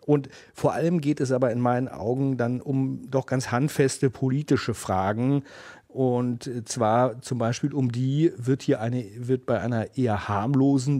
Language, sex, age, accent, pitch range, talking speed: German, male, 40-59, German, 115-135 Hz, 165 wpm